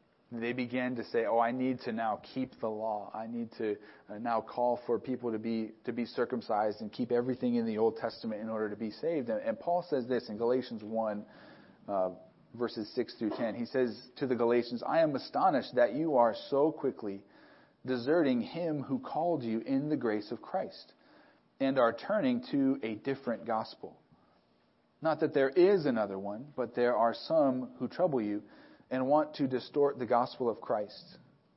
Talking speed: 190 wpm